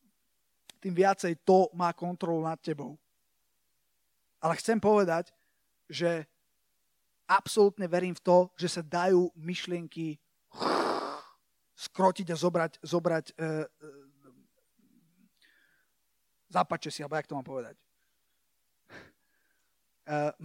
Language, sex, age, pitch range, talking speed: Slovak, male, 30-49, 160-195 Hz, 95 wpm